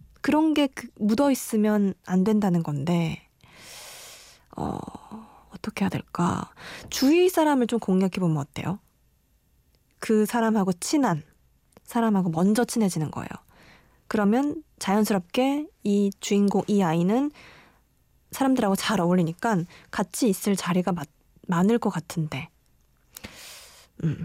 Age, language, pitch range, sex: 20-39, Korean, 175-235 Hz, female